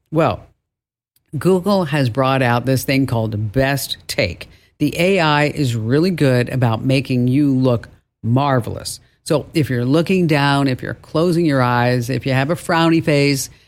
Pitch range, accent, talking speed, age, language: 125-160 Hz, American, 160 wpm, 50-69, English